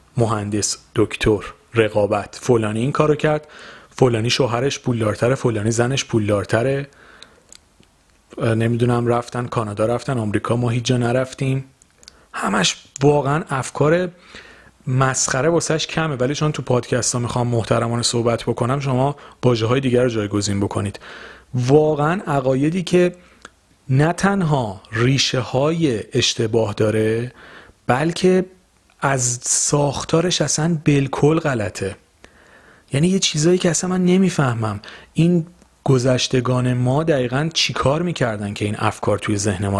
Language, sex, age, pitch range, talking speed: Persian, male, 40-59, 110-150 Hz, 120 wpm